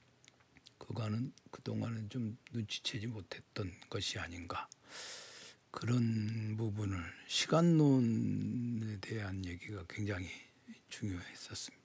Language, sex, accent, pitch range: Korean, male, native, 105-130 Hz